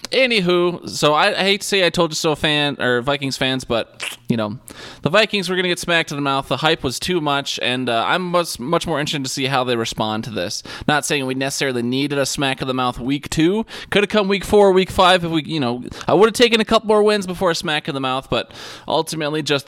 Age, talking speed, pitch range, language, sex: 20-39, 260 wpm, 125-170 Hz, English, male